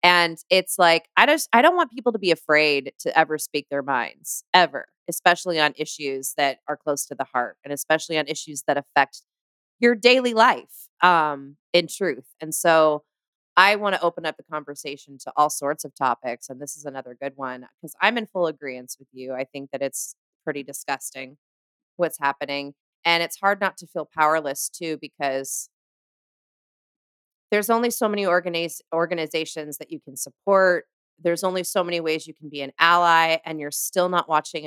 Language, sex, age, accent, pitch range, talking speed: English, female, 30-49, American, 140-175 Hz, 185 wpm